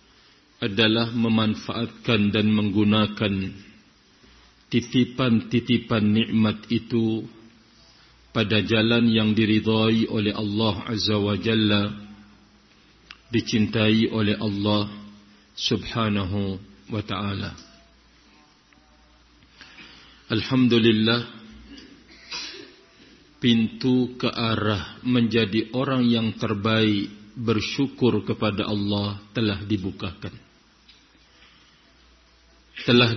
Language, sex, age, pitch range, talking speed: Indonesian, male, 50-69, 105-115 Hz, 65 wpm